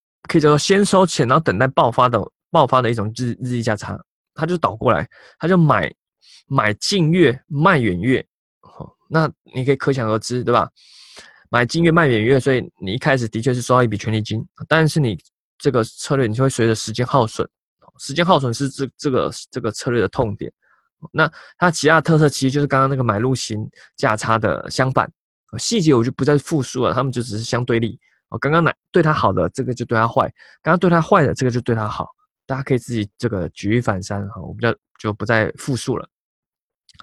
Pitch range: 115-145 Hz